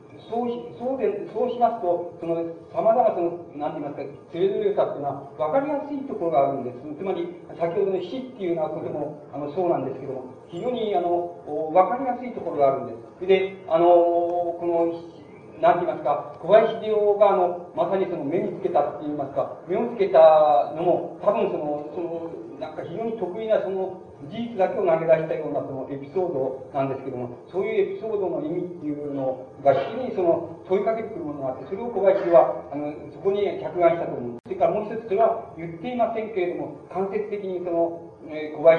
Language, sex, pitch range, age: Japanese, male, 145-195 Hz, 40-59